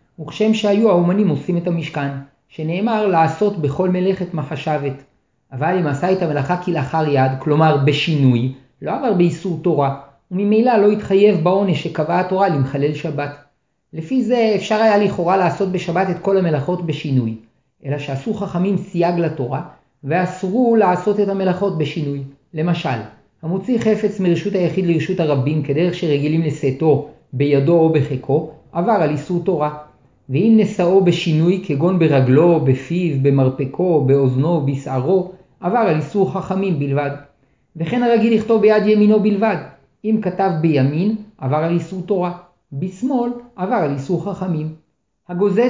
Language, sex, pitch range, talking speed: Hebrew, male, 145-195 Hz, 135 wpm